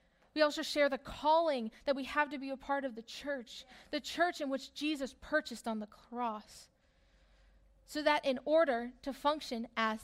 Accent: American